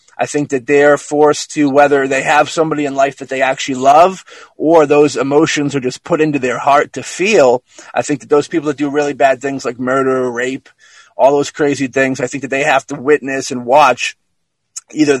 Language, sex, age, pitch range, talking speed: English, male, 30-49, 130-150 Hz, 215 wpm